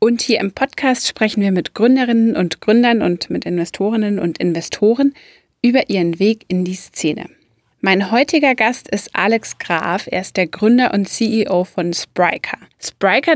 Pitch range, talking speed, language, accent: 180-235 Hz, 160 wpm, German, German